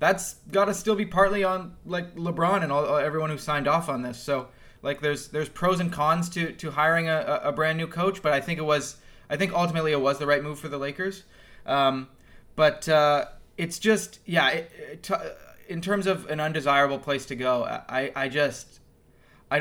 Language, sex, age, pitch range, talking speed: English, male, 20-39, 140-185 Hz, 210 wpm